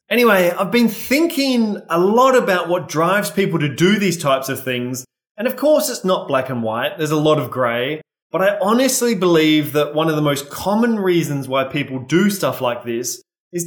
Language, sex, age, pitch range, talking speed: English, male, 20-39, 140-195 Hz, 205 wpm